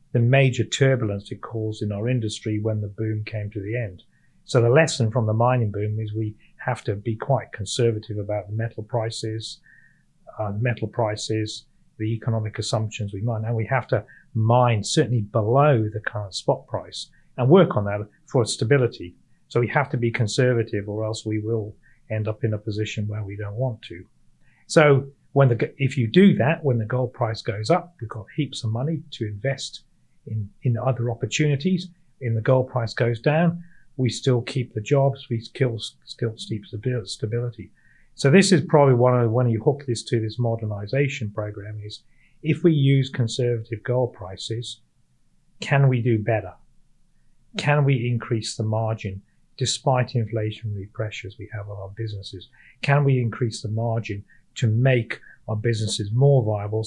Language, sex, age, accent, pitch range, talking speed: English, male, 40-59, British, 110-130 Hz, 175 wpm